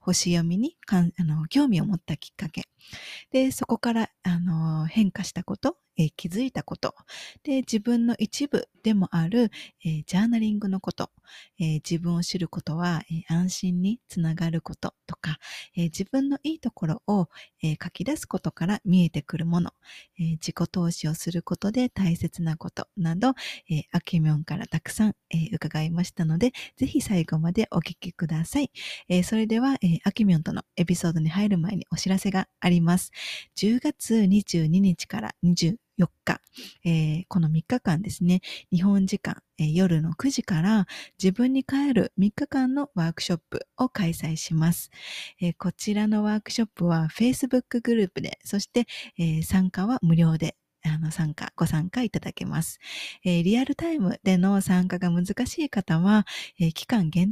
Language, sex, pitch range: Japanese, female, 170-220 Hz